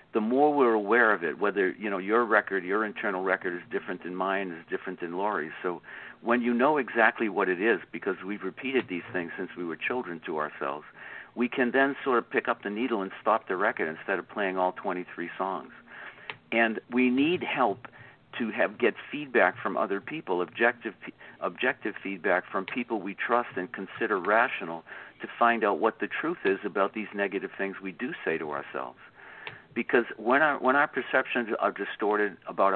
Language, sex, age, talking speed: English, male, 50-69, 195 wpm